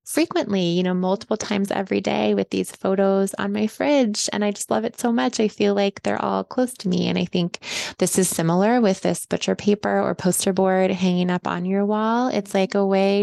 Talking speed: 225 wpm